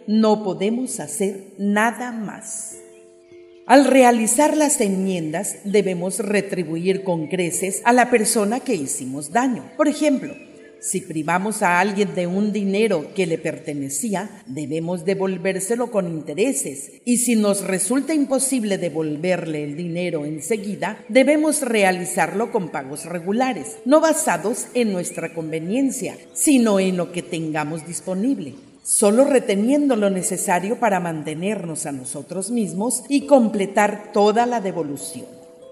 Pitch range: 170-235 Hz